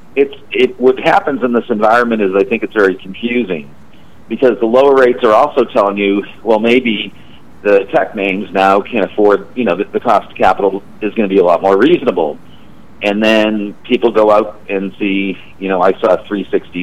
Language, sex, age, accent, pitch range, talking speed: English, male, 50-69, American, 100-120 Hz, 205 wpm